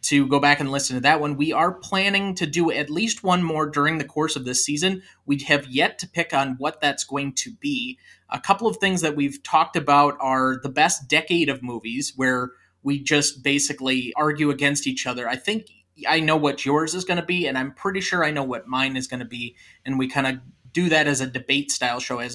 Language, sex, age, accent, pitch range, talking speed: English, male, 20-39, American, 135-165 Hz, 240 wpm